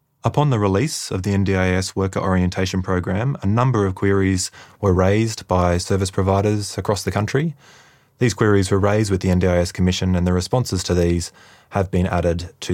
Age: 20-39